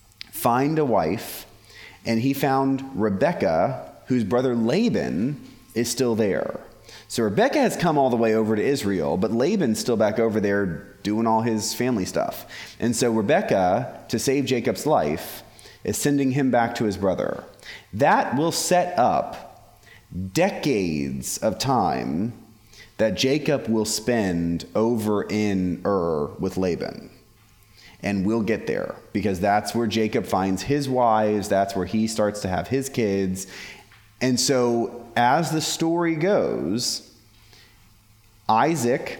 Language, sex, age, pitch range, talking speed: English, male, 30-49, 105-135 Hz, 140 wpm